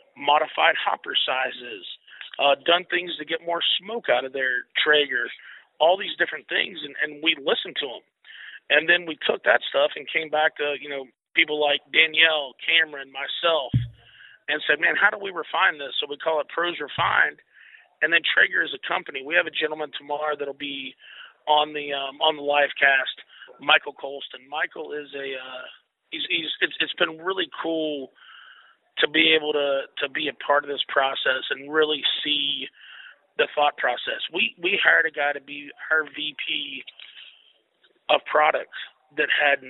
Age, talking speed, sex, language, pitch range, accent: 40-59, 185 wpm, male, English, 140-165 Hz, American